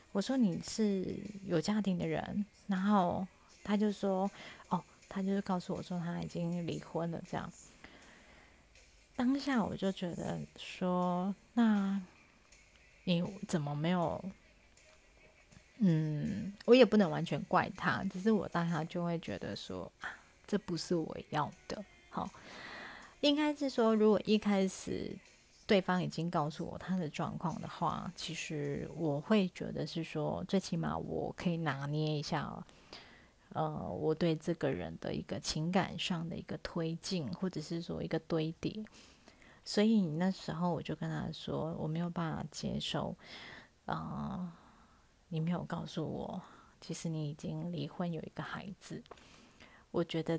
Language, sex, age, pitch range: Chinese, female, 30-49, 165-200 Hz